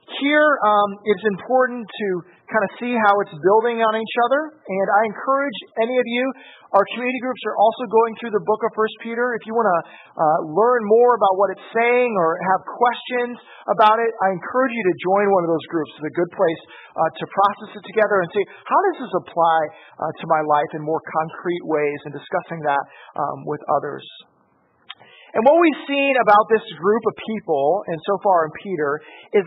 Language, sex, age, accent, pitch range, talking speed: English, male, 40-59, American, 185-235 Hz, 205 wpm